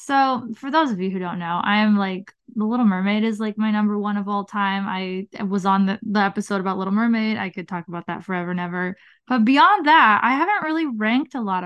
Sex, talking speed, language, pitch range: female, 245 wpm, English, 195-245 Hz